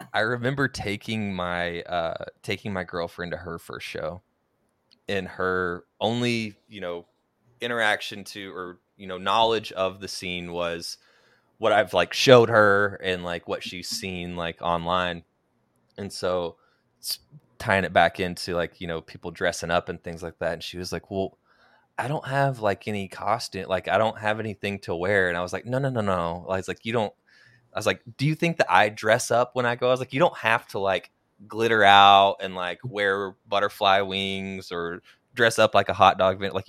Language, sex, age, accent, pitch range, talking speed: English, male, 20-39, American, 90-115 Hz, 200 wpm